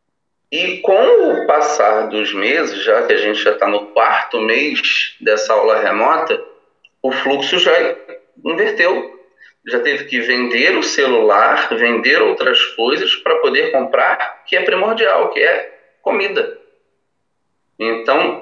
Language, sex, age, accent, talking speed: Portuguese, male, 40-59, Brazilian, 135 wpm